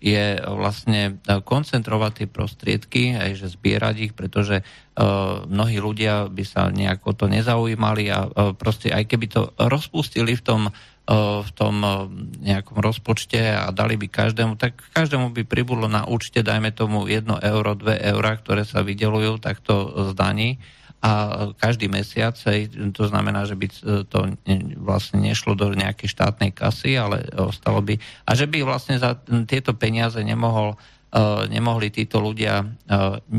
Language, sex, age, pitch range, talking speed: Czech, male, 50-69, 105-120 Hz, 155 wpm